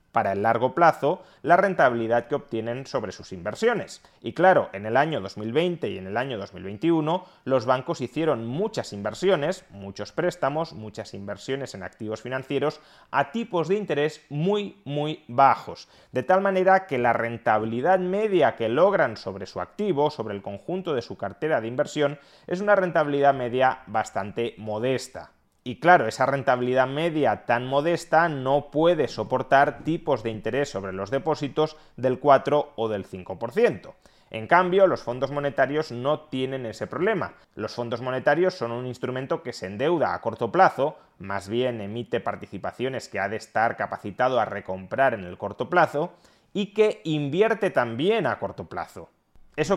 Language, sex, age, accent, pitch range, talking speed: Spanish, male, 30-49, Spanish, 120-170 Hz, 160 wpm